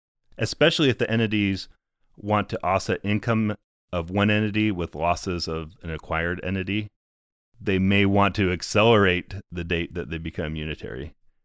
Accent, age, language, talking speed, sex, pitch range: American, 30-49, English, 145 wpm, male, 90-120 Hz